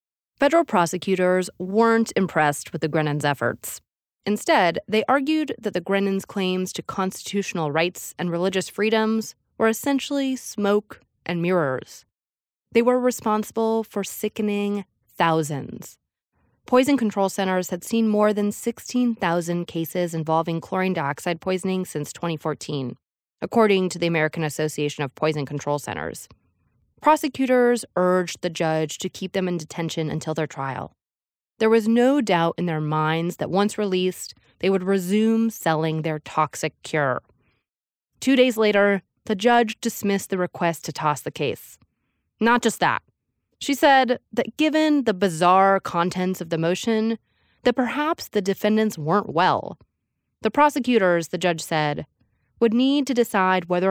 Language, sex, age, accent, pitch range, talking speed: English, female, 20-39, American, 165-225 Hz, 140 wpm